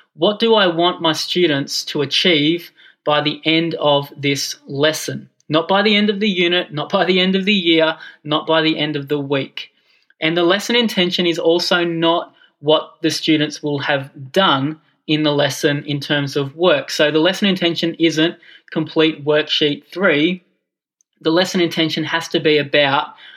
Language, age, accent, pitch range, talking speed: English, 20-39, Australian, 150-185 Hz, 180 wpm